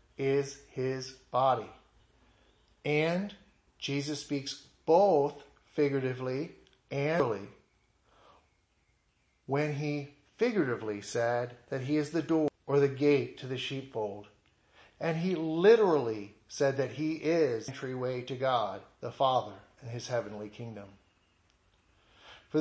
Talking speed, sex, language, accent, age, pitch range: 110 wpm, male, English, American, 40-59, 125-155 Hz